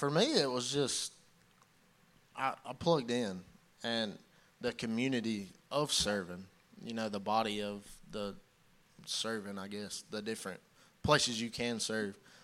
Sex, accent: male, American